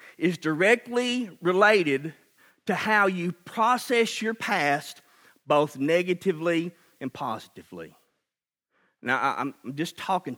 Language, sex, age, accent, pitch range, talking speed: English, male, 40-59, American, 175-245 Hz, 100 wpm